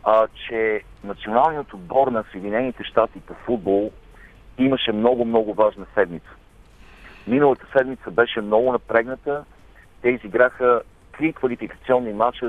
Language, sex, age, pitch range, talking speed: Bulgarian, male, 50-69, 105-145 Hz, 105 wpm